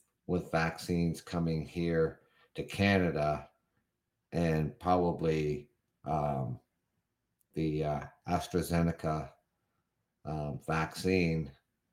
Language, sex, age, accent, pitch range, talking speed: English, male, 50-69, American, 80-95 Hz, 70 wpm